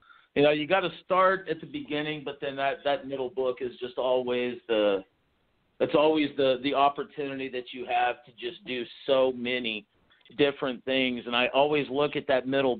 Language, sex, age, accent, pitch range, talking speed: English, male, 50-69, American, 125-155 Hz, 190 wpm